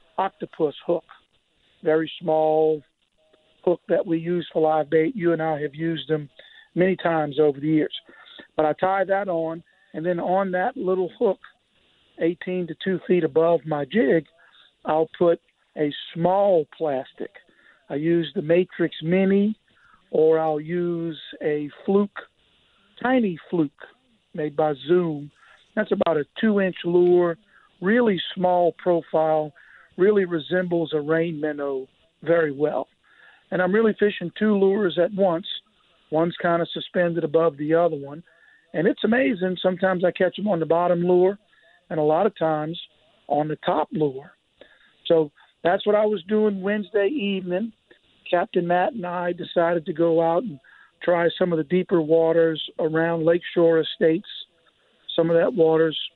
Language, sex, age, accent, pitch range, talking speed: English, male, 50-69, American, 160-190 Hz, 150 wpm